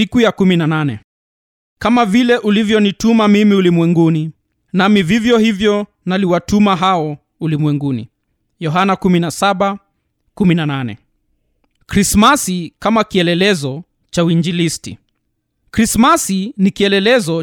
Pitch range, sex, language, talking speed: 165-220 Hz, male, Swahili, 75 wpm